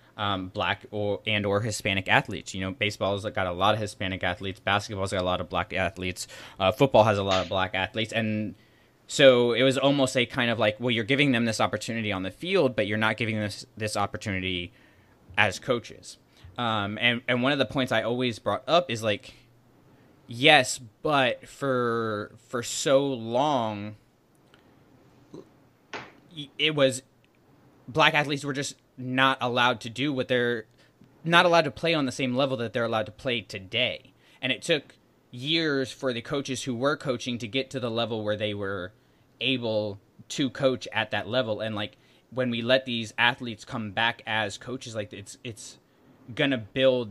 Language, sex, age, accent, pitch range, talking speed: English, male, 20-39, American, 105-130 Hz, 185 wpm